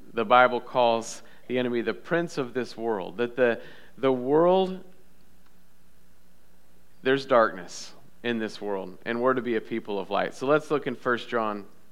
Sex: male